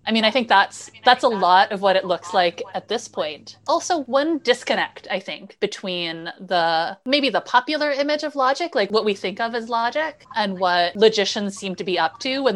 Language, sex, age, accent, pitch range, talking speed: English, female, 20-39, American, 190-245 Hz, 215 wpm